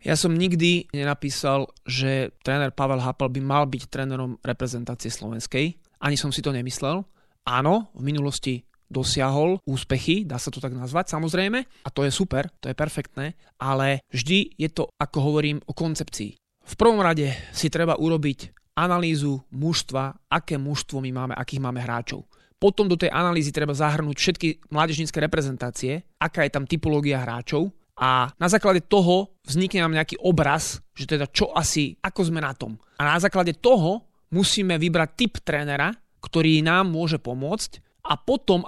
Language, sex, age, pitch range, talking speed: Slovak, male, 30-49, 140-170 Hz, 160 wpm